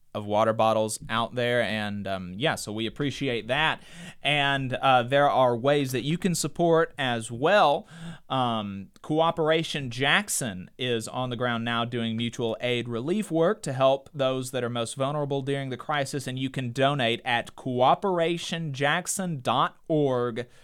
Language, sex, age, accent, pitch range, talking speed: English, male, 30-49, American, 125-170 Hz, 150 wpm